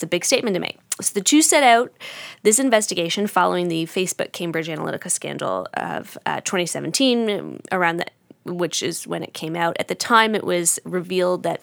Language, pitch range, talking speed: English, 170-205 Hz, 185 wpm